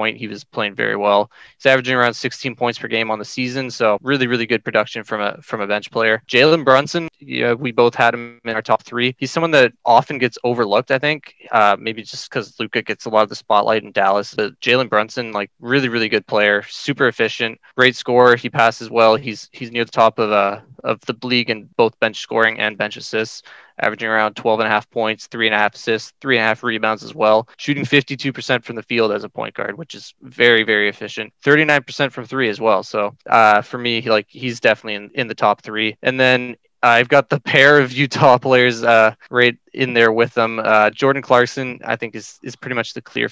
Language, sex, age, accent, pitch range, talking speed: English, male, 20-39, American, 110-130 Hz, 230 wpm